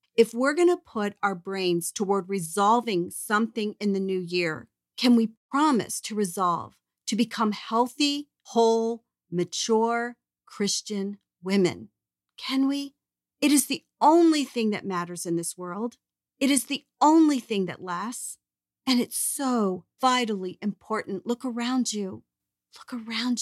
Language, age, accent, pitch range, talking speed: English, 40-59, American, 190-250 Hz, 140 wpm